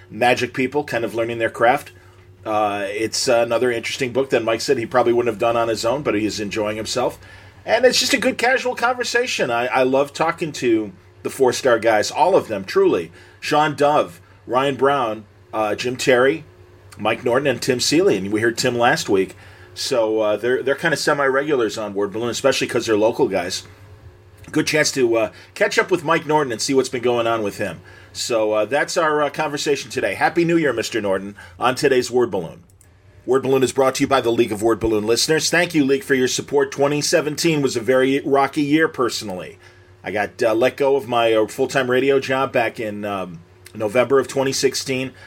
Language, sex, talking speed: English, male, 205 wpm